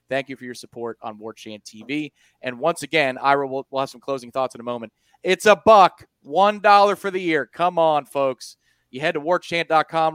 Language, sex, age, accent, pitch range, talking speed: English, male, 30-49, American, 115-160 Hz, 200 wpm